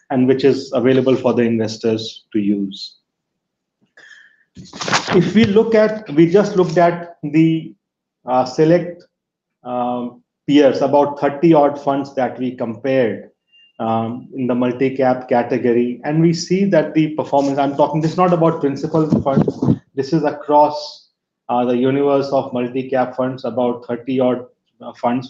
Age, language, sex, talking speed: 30-49, English, male, 150 wpm